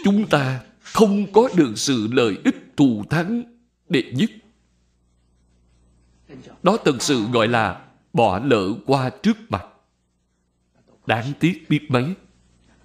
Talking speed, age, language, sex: 120 wpm, 60-79, Vietnamese, male